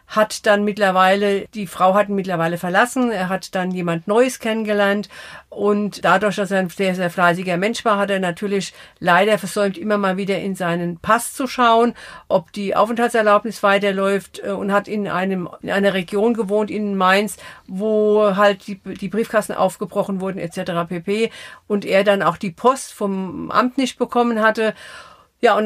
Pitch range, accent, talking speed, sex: 190-220 Hz, German, 175 wpm, female